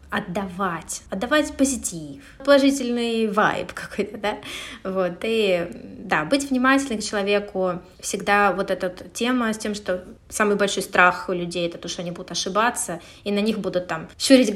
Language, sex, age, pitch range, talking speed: Russian, female, 20-39, 185-225 Hz, 160 wpm